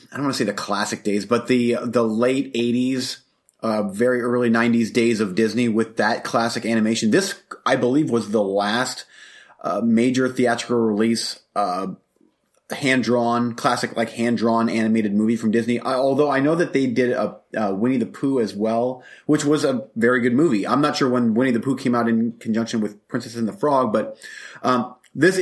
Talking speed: 195 wpm